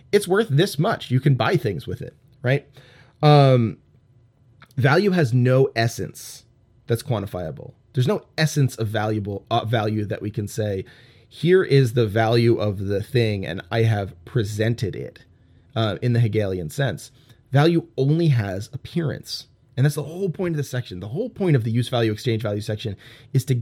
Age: 30-49